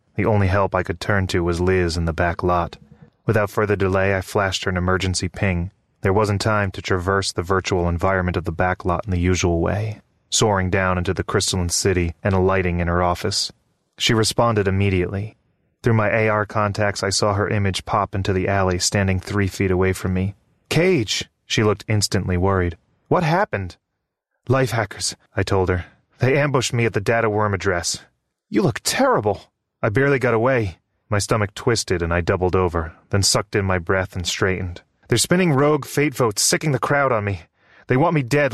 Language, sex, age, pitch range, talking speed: English, male, 30-49, 95-110 Hz, 195 wpm